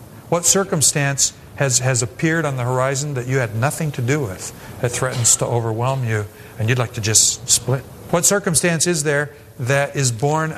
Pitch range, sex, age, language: 110-135 Hz, male, 50-69, English